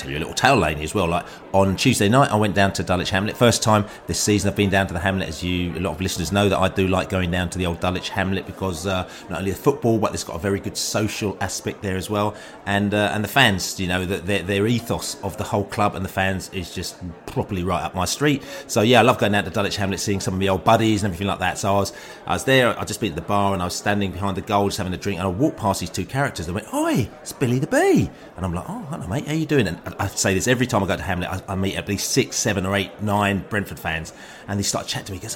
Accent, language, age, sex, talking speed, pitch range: British, English, 30-49, male, 315 wpm, 90-115 Hz